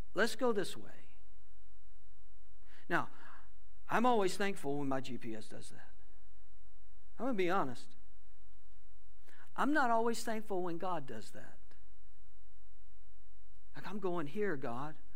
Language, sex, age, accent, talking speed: English, male, 60-79, American, 125 wpm